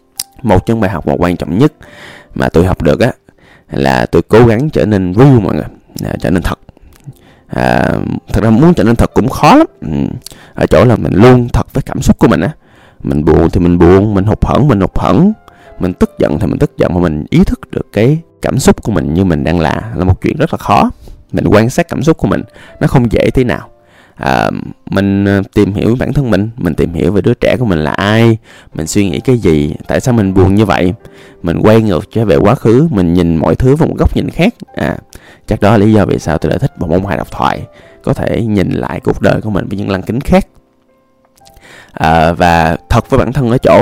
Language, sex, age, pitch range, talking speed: Vietnamese, male, 20-39, 85-115 Hz, 245 wpm